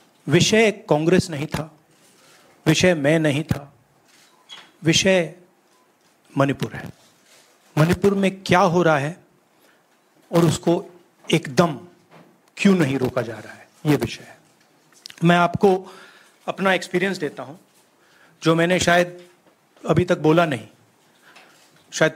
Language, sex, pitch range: Marathi, male, 140-175 Hz